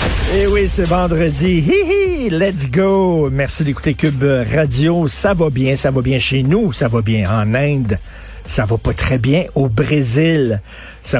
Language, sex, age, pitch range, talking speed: French, male, 50-69, 120-160 Hz, 170 wpm